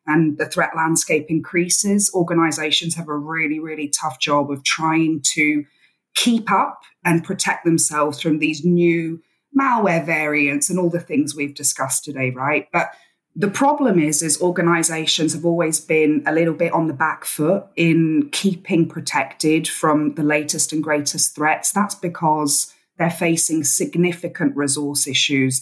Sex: female